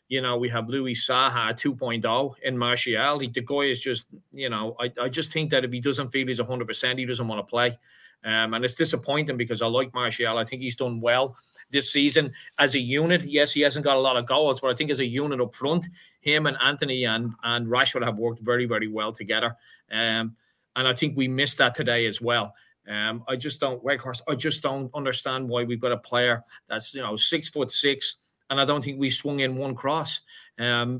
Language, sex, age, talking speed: English, male, 30-49, 230 wpm